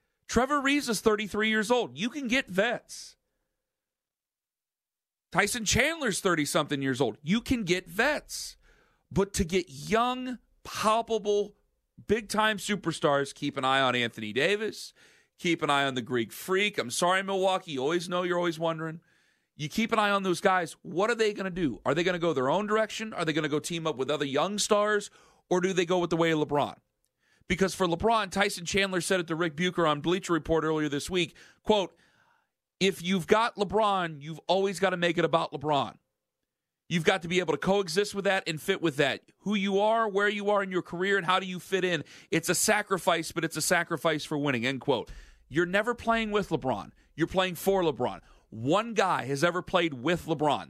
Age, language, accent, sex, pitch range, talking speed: 40-59, English, American, male, 165-205 Hz, 205 wpm